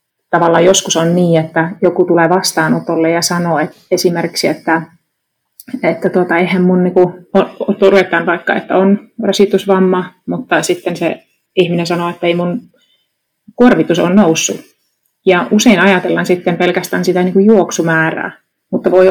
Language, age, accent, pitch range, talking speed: Finnish, 30-49, native, 170-190 Hz, 140 wpm